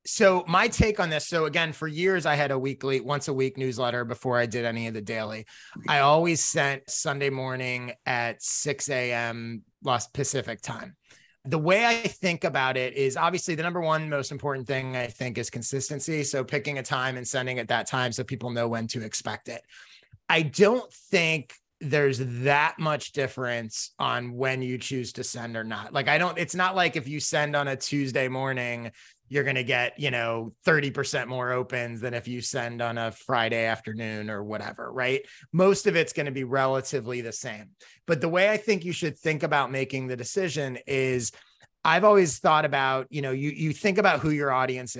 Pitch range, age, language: 125-155 Hz, 30-49, English